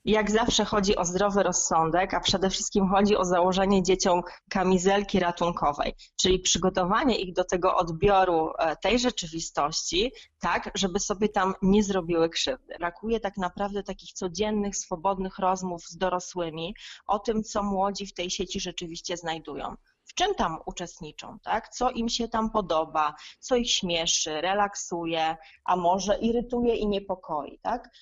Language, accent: Polish, native